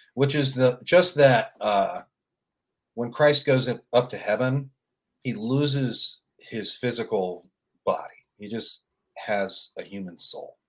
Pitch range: 100-140 Hz